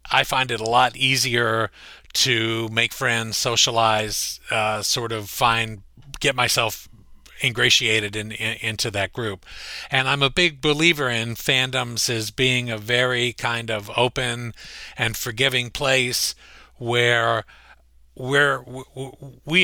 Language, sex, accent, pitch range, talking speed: English, male, American, 115-135 Hz, 120 wpm